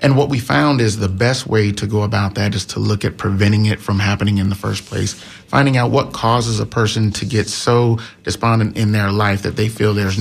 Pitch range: 100-115 Hz